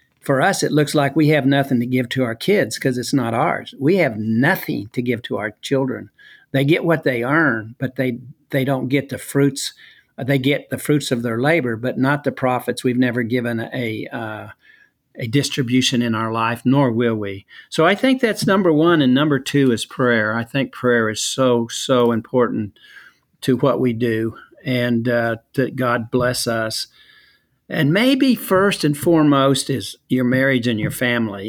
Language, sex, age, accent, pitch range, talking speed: English, male, 50-69, American, 120-145 Hz, 190 wpm